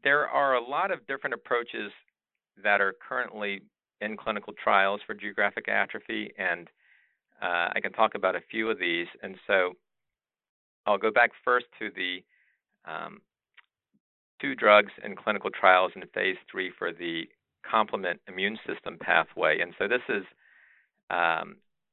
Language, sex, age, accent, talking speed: English, male, 50-69, American, 150 wpm